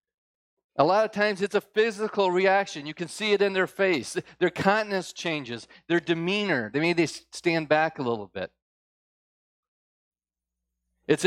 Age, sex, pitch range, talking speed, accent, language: 40-59, male, 110-155 Hz, 155 wpm, American, English